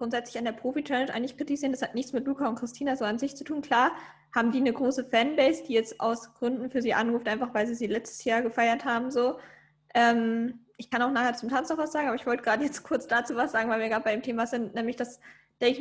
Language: German